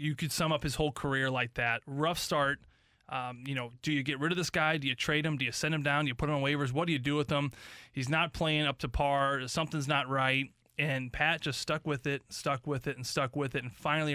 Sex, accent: male, American